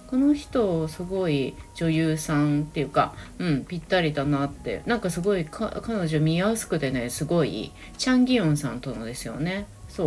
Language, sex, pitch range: Japanese, female, 145-205 Hz